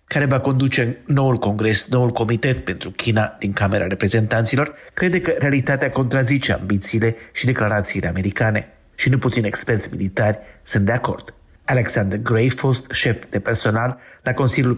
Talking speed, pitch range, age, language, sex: 150 wpm, 105-130 Hz, 50-69, Romanian, male